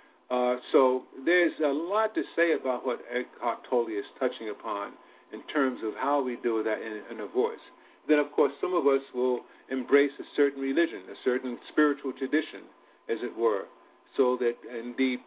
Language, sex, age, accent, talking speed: English, male, 50-69, American, 175 wpm